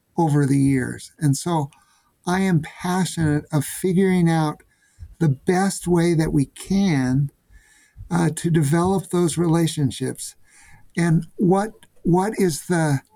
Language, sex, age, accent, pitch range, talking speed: English, male, 50-69, American, 155-185 Hz, 110 wpm